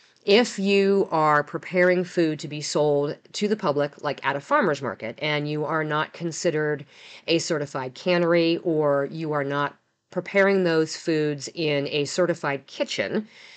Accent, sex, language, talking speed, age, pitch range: American, female, English, 155 wpm, 40-59, 155-195 Hz